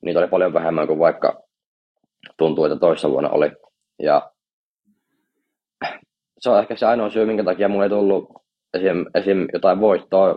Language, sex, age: Finnish, male, 20-39